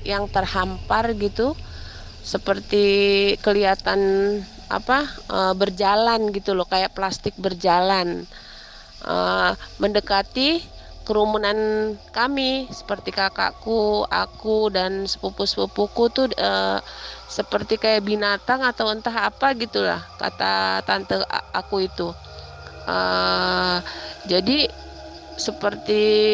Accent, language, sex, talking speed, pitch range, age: native, Indonesian, female, 90 wpm, 185-220 Hz, 30-49